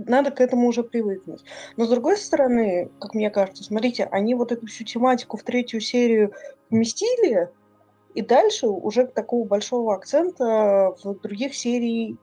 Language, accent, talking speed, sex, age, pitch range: Russian, native, 150 wpm, female, 20-39, 195-250 Hz